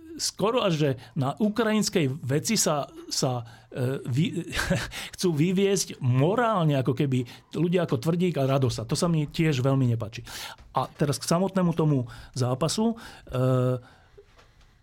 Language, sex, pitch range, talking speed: Slovak, male, 120-155 Hz, 140 wpm